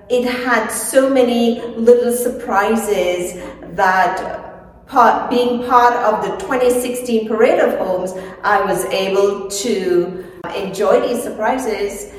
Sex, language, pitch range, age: female, English, 190-245 Hz, 40-59